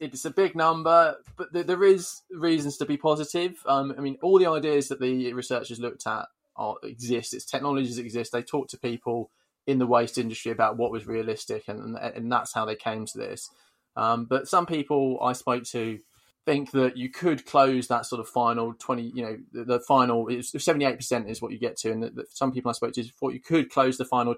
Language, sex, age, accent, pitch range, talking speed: English, male, 20-39, British, 110-130 Hz, 220 wpm